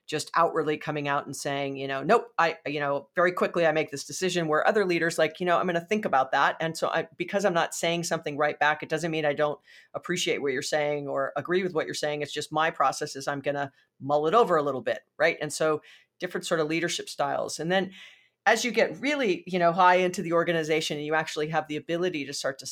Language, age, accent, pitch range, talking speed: English, 40-59, American, 145-175 Hz, 260 wpm